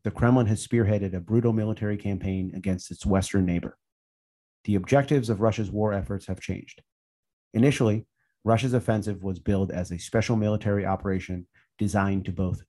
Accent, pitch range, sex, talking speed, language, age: American, 95-115 Hz, male, 155 wpm, English, 30-49